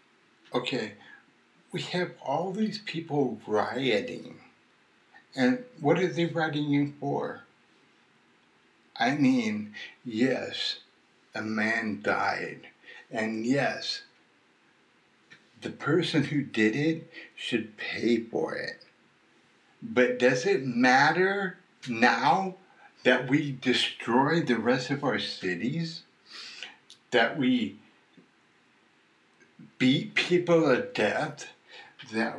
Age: 60-79